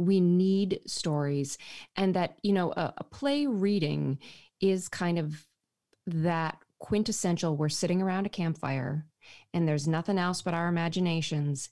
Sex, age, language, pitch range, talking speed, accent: female, 30-49, English, 150-180 Hz, 145 wpm, American